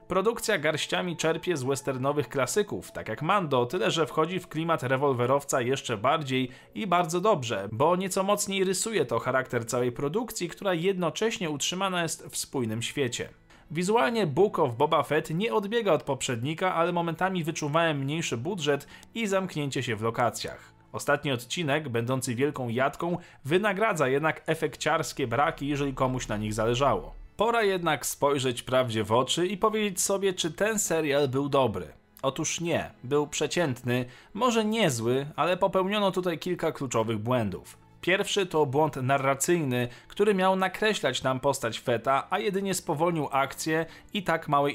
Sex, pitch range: male, 130-180 Hz